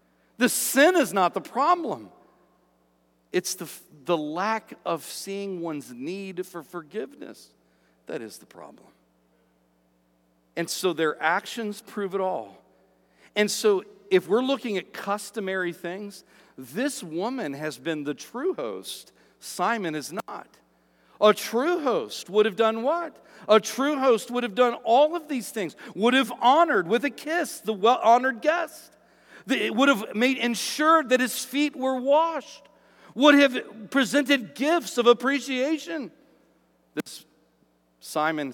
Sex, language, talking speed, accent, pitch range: male, English, 140 wpm, American, 170-260 Hz